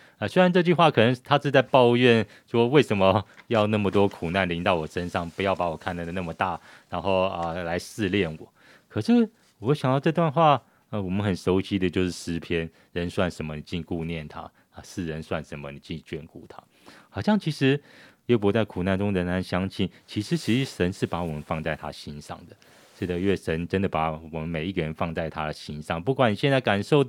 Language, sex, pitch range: Chinese, male, 85-115 Hz